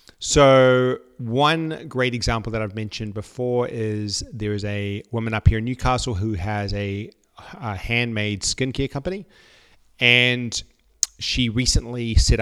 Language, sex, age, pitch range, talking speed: English, male, 30-49, 105-125 Hz, 135 wpm